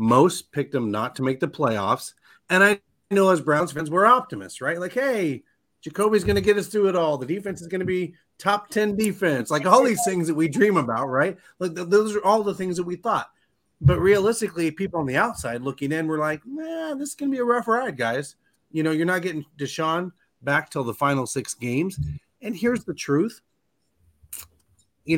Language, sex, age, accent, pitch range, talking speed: English, male, 30-49, American, 135-190 Hz, 215 wpm